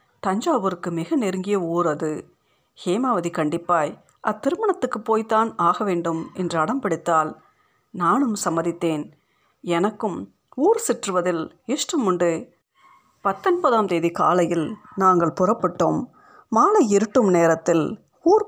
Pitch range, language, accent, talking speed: 170-270 Hz, Tamil, native, 90 wpm